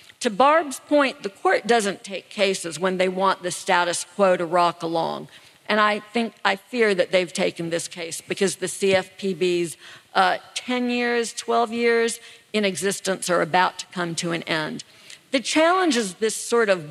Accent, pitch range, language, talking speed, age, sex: American, 185-230 Hz, English, 175 wpm, 50-69, female